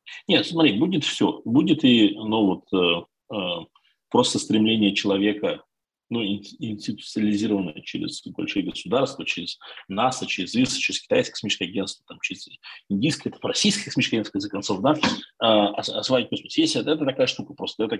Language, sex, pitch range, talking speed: Russian, male, 100-145 Hz, 150 wpm